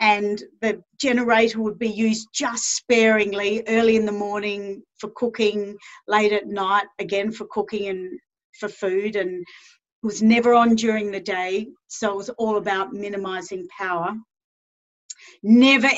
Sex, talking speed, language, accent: female, 145 wpm, English, Australian